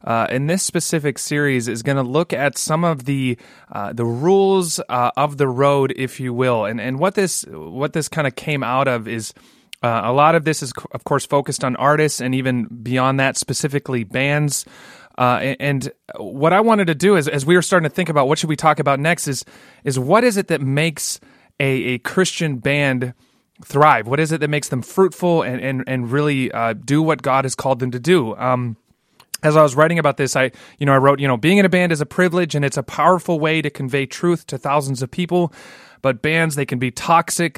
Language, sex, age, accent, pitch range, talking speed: English, male, 30-49, American, 130-165 Hz, 230 wpm